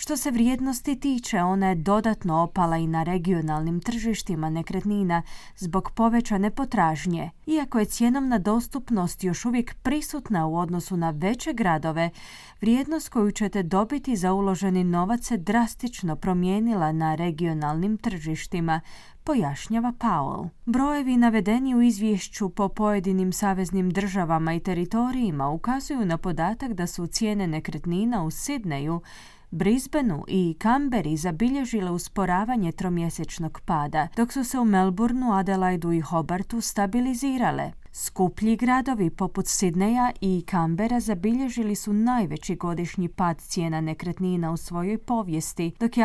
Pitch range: 170-230 Hz